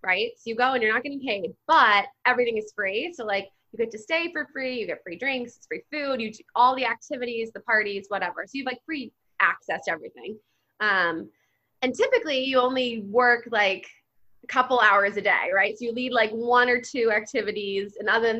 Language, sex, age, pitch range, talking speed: English, female, 20-39, 195-255 Hz, 220 wpm